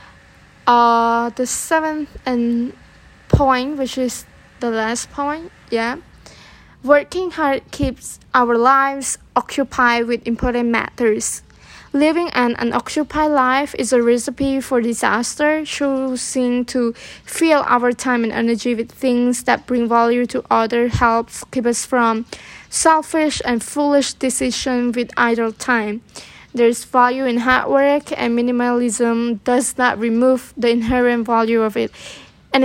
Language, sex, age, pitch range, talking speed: English, female, 20-39, 235-270 Hz, 130 wpm